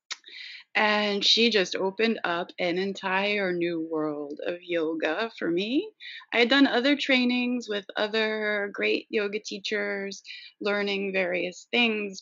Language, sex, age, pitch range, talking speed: French, female, 30-49, 175-225 Hz, 130 wpm